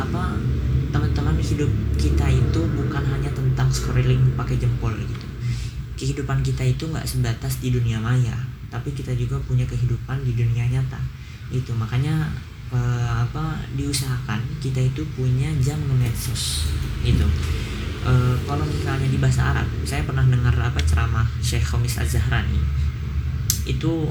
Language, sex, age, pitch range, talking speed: Indonesian, female, 20-39, 115-130 Hz, 125 wpm